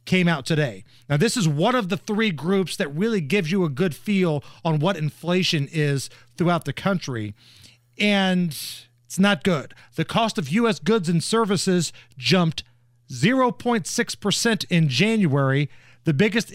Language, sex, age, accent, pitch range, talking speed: English, male, 40-59, American, 135-210 Hz, 150 wpm